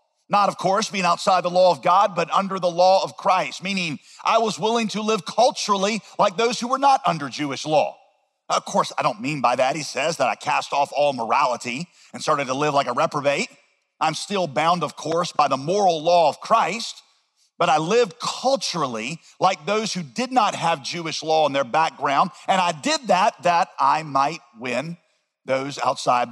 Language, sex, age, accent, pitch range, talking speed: English, male, 50-69, American, 150-215 Hz, 200 wpm